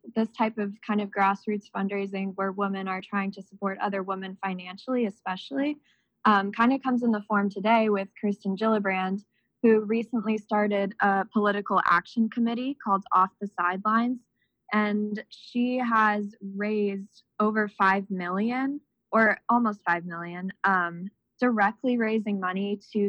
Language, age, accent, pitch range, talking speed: English, 20-39, American, 190-220 Hz, 145 wpm